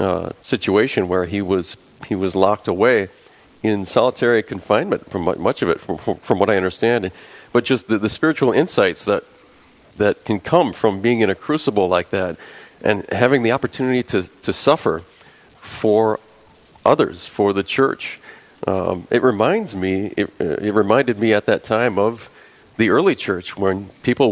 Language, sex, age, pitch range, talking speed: English, male, 40-59, 100-125 Hz, 170 wpm